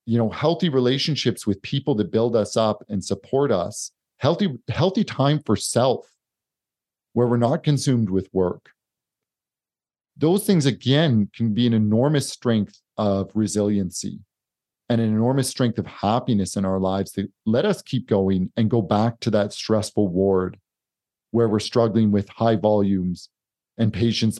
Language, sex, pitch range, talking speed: English, male, 105-140 Hz, 155 wpm